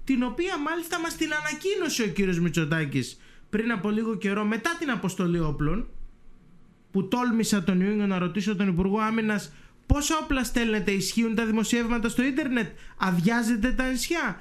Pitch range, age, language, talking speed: 170-235 Hz, 20-39, Greek, 155 wpm